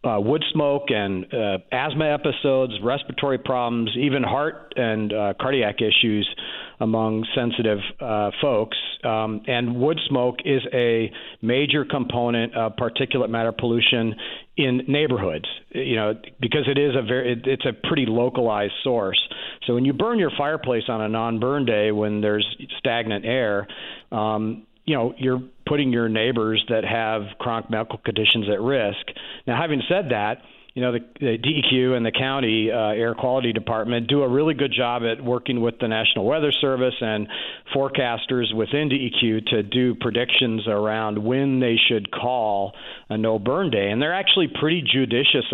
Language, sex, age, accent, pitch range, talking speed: English, male, 50-69, American, 110-135 Hz, 160 wpm